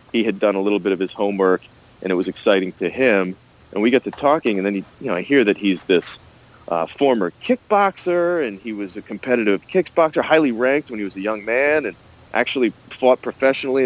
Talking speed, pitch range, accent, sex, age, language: 215 wpm, 95-120 Hz, American, male, 40-59, English